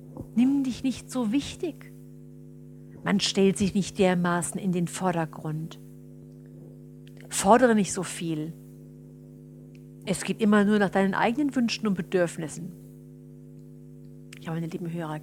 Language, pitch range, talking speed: German, 180-230 Hz, 120 wpm